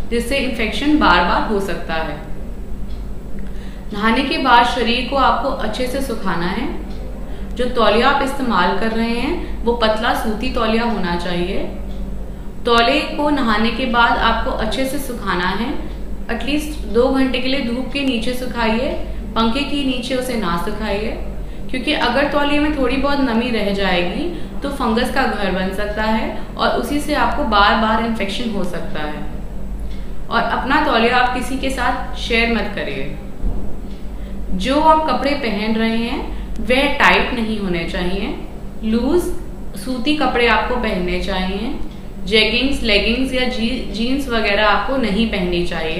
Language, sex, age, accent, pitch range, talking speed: Hindi, female, 30-49, native, 205-260 Hz, 145 wpm